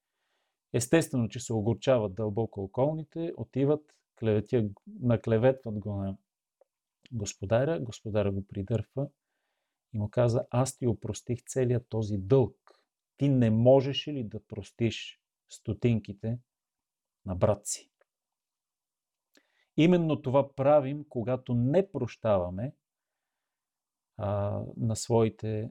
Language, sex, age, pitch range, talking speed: Bulgarian, male, 40-59, 110-135 Hz, 100 wpm